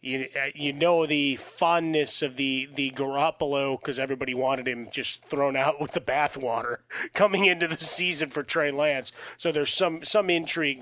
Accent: American